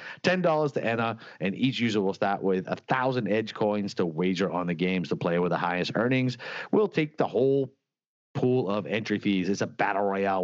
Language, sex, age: English, male, 30-49